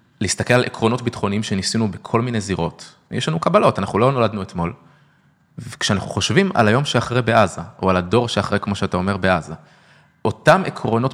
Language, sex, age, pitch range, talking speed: English, male, 20-39, 95-135 Hz, 160 wpm